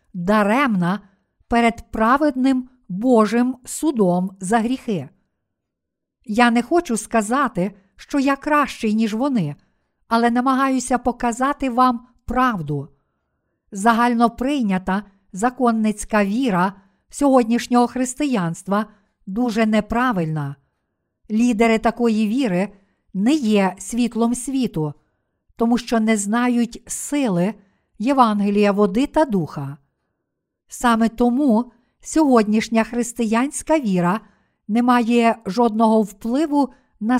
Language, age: Ukrainian, 50-69